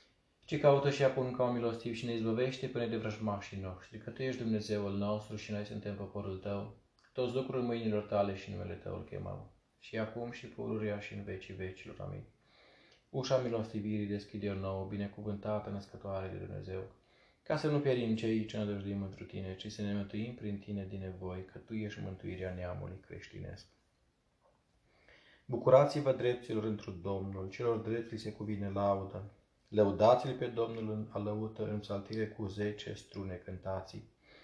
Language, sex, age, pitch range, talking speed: Romanian, male, 20-39, 100-120 Hz, 160 wpm